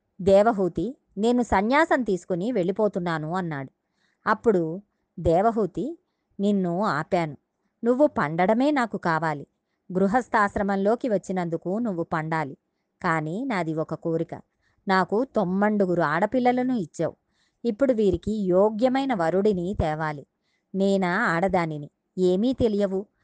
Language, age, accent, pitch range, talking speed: Telugu, 20-39, native, 175-225 Hz, 90 wpm